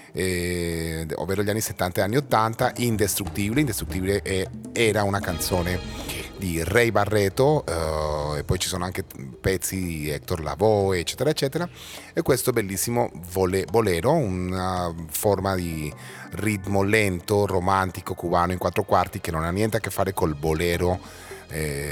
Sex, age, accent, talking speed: male, 30-49, native, 150 wpm